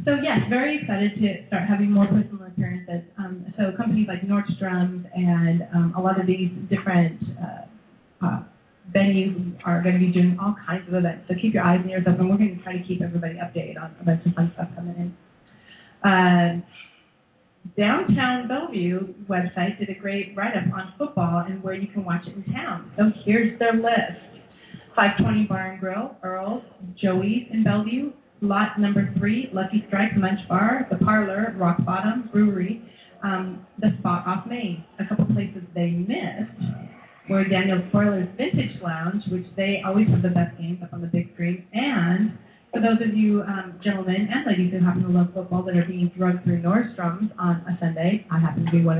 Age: 30-49